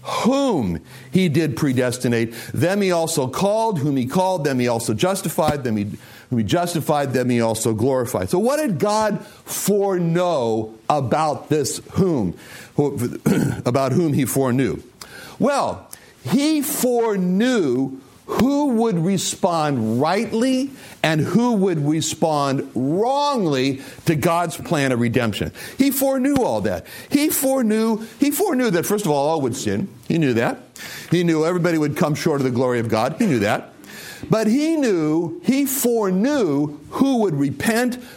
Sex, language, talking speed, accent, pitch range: male, English, 145 wpm, American, 135-215 Hz